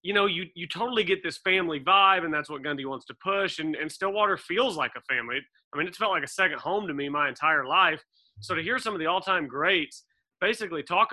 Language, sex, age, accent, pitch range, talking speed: English, male, 30-49, American, 140-165 Hz, 250 wpm